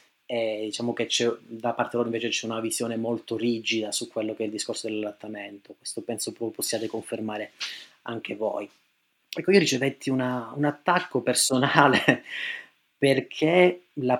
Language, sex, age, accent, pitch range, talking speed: Italian, male, 30-49, native, 120-155 Hz, 150 wpm